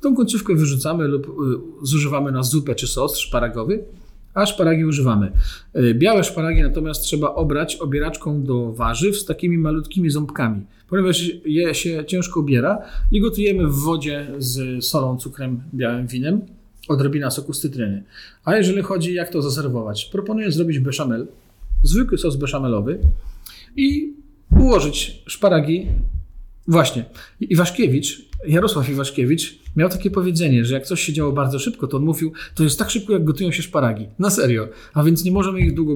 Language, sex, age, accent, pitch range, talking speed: Polish, male, 40-59, native, 130-175 Hz, 150 wpm